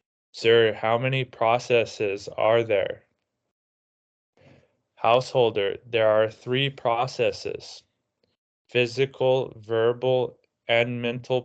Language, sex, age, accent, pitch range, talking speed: English, male, 20-39, American, 110-130 Hz, 80 wpm